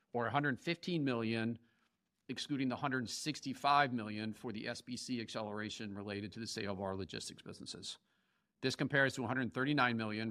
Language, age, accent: English, 50-69, American